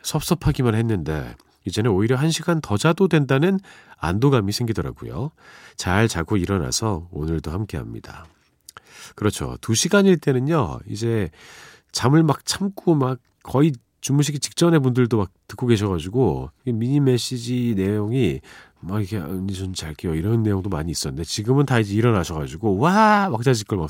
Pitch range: 90-135 Hz